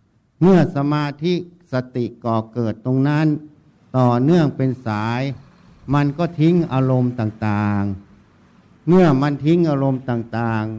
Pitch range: 115-150 Hz